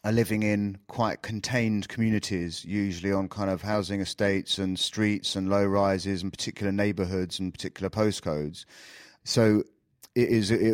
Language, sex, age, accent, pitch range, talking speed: English, male, 30-49, British, 95-110 Hz, 135 wpm